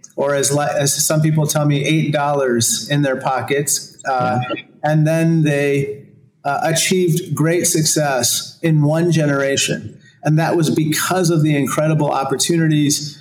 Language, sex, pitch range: English, male, 140-160 Hz